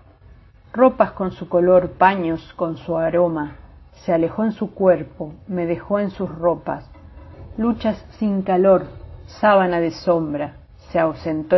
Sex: female